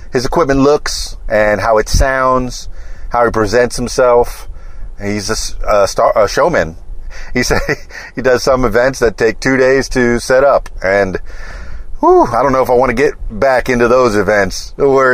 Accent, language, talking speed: American, English, 175 wpm